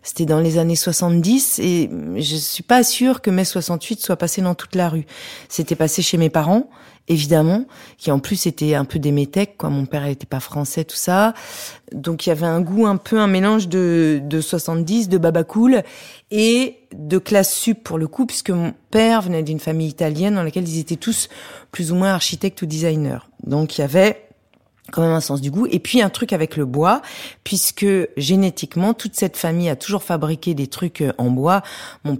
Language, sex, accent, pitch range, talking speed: French, female, French, 155-200 Hz, 210 wpm